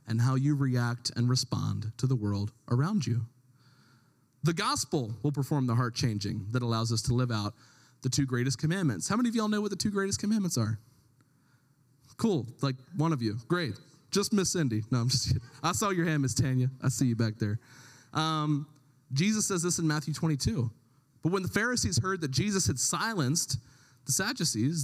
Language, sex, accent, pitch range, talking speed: English, male, American, 130-175 Hz, 195 wpm